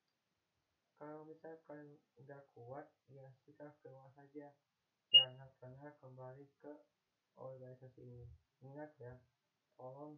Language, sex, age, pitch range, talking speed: Indonesian, male, 20-39, 130-145 Hz, 100 wpm